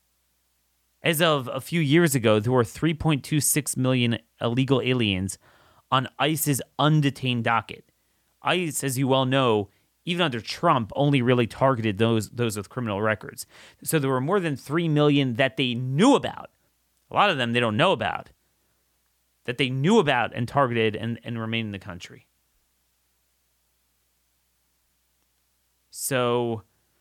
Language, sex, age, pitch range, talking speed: English, male, 30-49, 95-130 Hz, 140 wpm